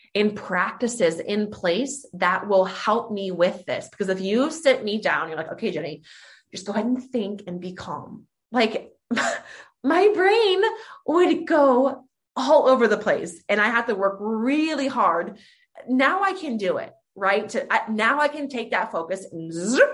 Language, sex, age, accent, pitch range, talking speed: English, female, 20-39, American, 200-260 Hz, 170 wpm